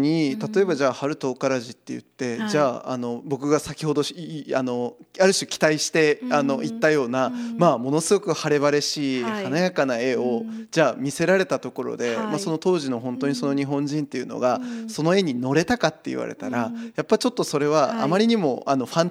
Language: Japanese